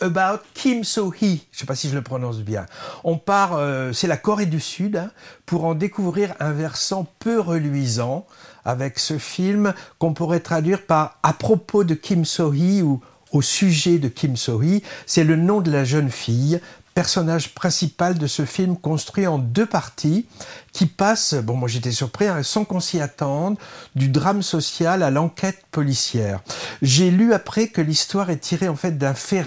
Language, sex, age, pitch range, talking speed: French, male, 60-79, 140-190 Hz, 185 wpm